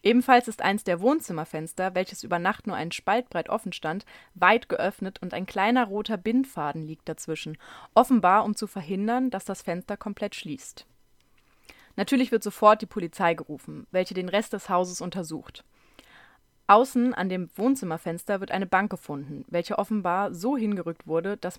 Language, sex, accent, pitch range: German, female, German, 175-225 Hz